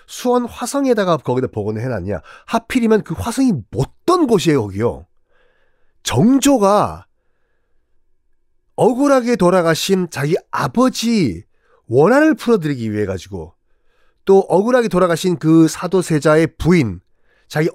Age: 40-59